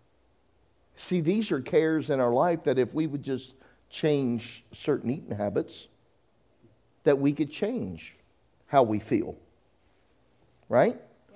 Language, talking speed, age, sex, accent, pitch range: English, 125 wpm, 50-69, male, American, 120-170 Hz